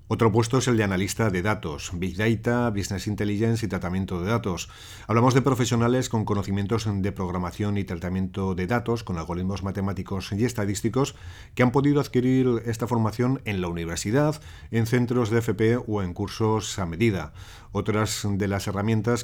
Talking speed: 170 wpm